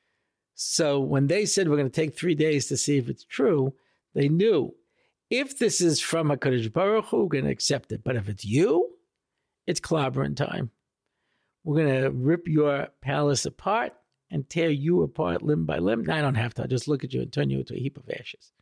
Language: English